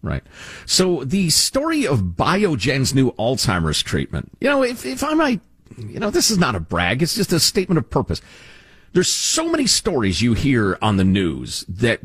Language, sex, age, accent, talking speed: English, male, 50-69, American, 190 wpm